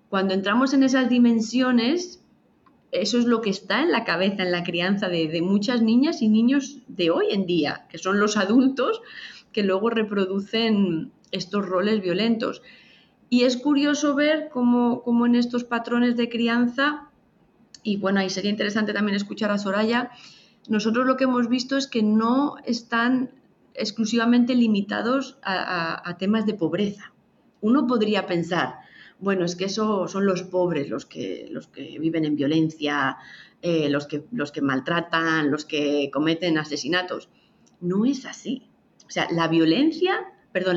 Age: 20-39